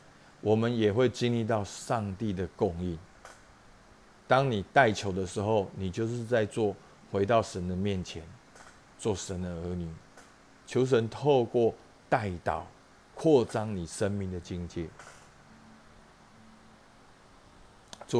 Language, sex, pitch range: Chinese, male, 95-115 Hz